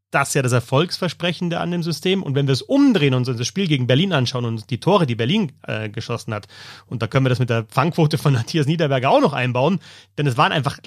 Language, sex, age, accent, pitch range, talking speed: German, male, 30-49, German, 130-180 Hz, 255 wpm